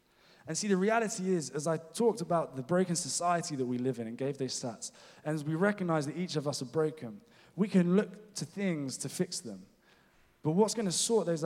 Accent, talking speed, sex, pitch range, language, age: British, 230 wpm, male, 125-170 Hz, English, 20-39